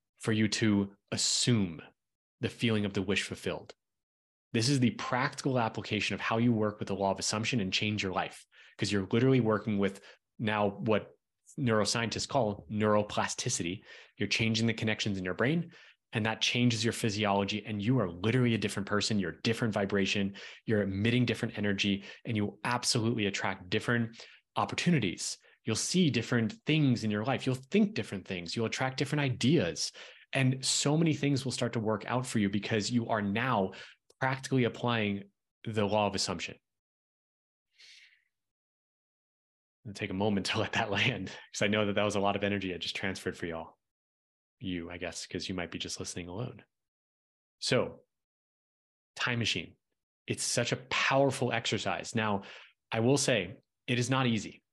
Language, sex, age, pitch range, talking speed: English, male, 20-39, 100-120 Hz, 170 wpm